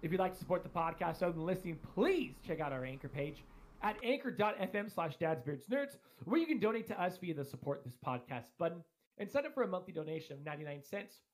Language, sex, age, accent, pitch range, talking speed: English, male, 30-49, American, 165-210 Hz, 215 wpm